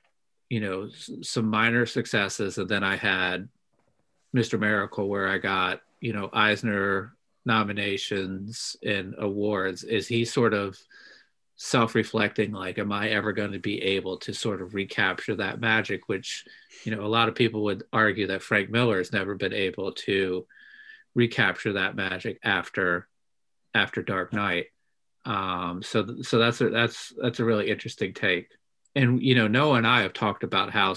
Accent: American